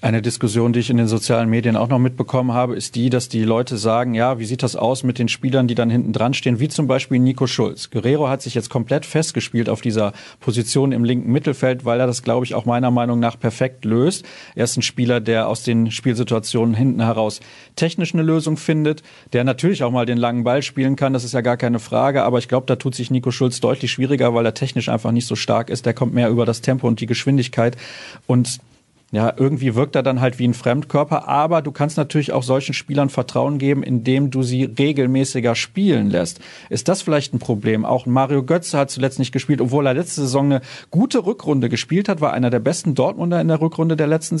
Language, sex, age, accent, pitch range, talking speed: German, male, 40-59, German, 120-145 Hz, 230 wpm